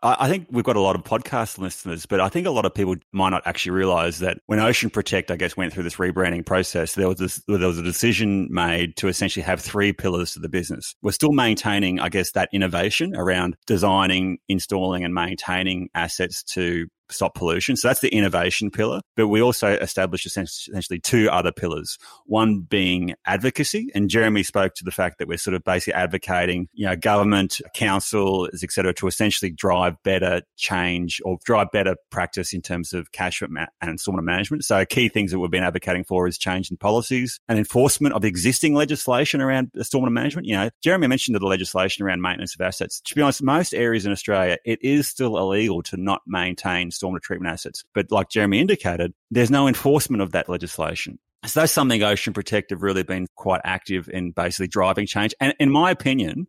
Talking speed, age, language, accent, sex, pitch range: 200 wpm, 30-49, English, Australian, male, 90-110 Hz